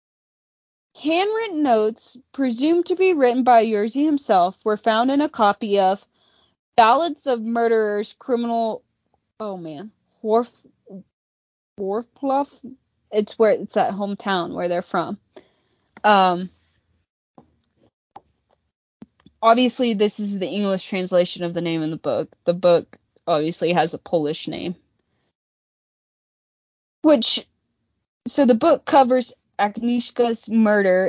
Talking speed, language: 110 wpm, English